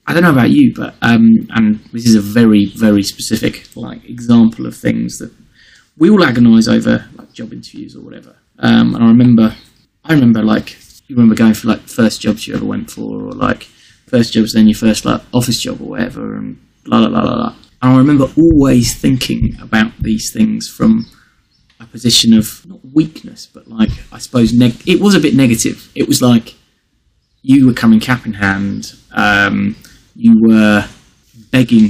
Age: 20-39